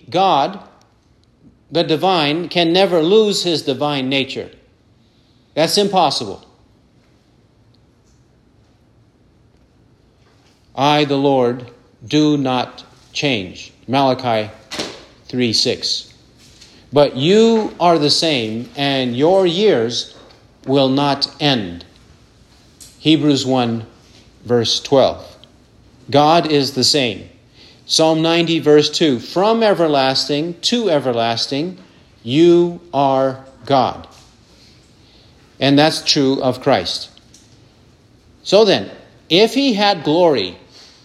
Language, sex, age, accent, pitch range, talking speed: English, male, 50-69, American, 120-175 Hz, 90 wpm